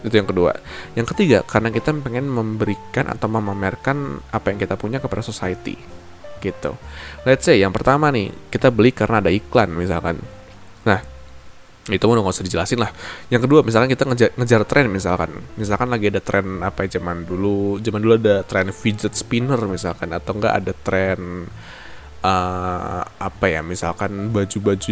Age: 20-39